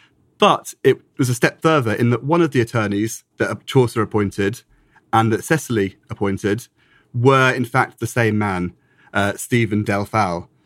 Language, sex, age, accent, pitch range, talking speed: English, male, 30-49, British, 110-140 Hz, 165 wpm